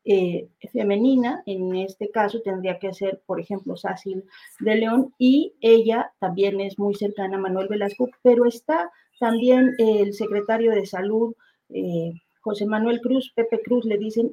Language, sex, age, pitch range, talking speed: Spanish, female, 40-59, 190-230 Hz, 155 wpm